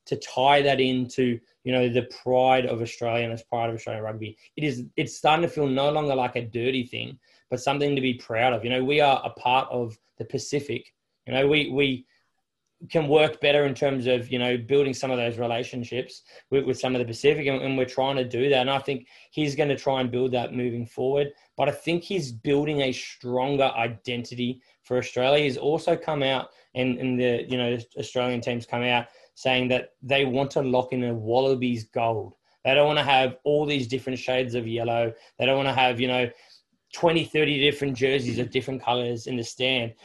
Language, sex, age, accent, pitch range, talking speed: English, male, 20-39, Australian, 120-135 Hz, 215 wpm